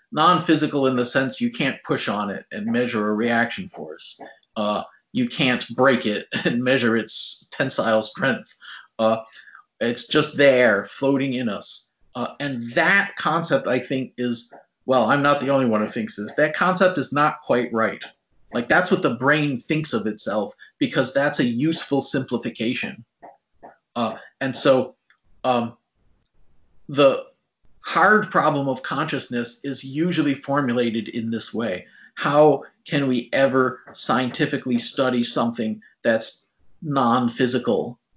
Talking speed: 140 wpm